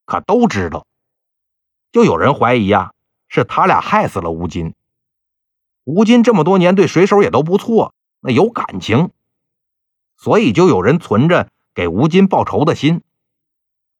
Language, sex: Chinese, male